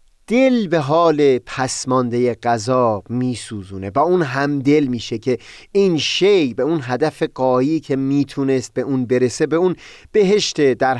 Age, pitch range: 30-49, 120-170 Hz